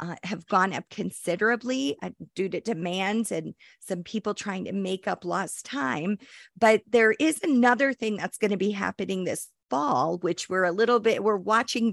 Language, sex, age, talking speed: English, female, 40-59, 180 wpm